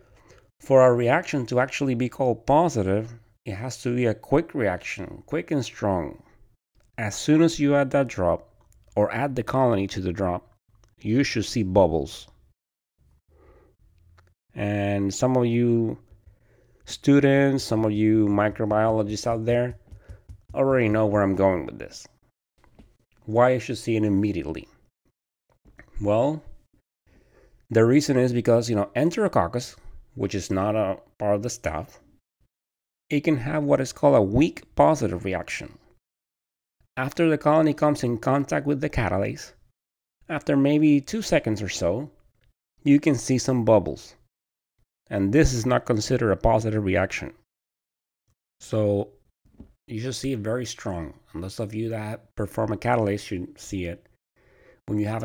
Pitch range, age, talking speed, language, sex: 100-125 Hz, 30-49, 145 wpm, English, male